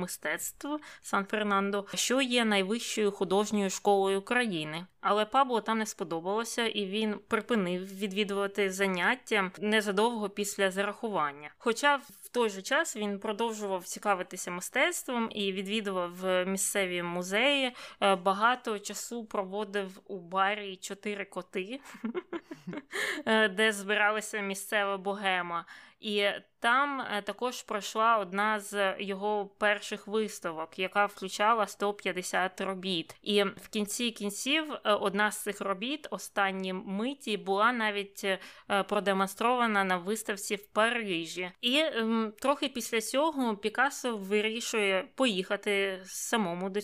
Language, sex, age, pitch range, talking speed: Ukrainian, female, 20-39, 195-230 Hz, 110 wpm